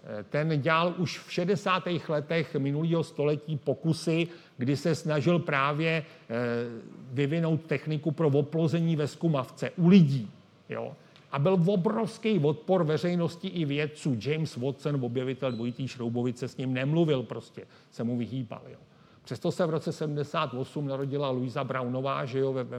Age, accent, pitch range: 40-59, native, 135-165 Hz